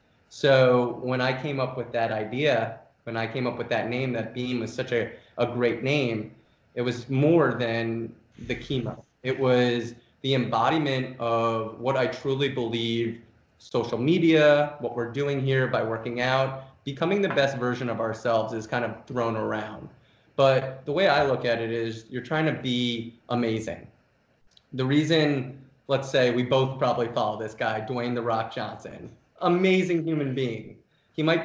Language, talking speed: English, 170 wpm